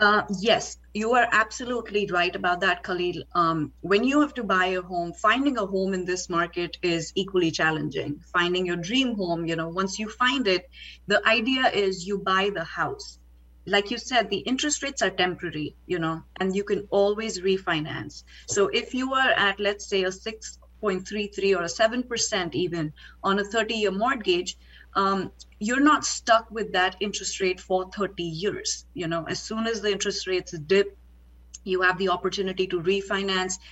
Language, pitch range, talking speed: Arabic, 180-215 Hz, 180 wpm